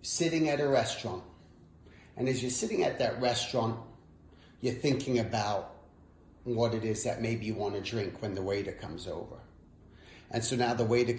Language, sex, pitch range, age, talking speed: English, male, 105-155 Hz, 30-49, 175 wpm